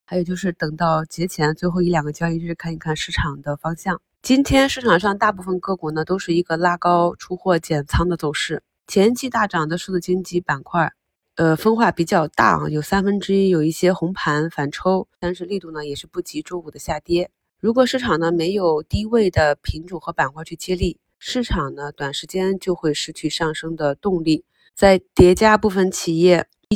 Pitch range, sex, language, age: 155-190 Hz, female, Chinese, 20-39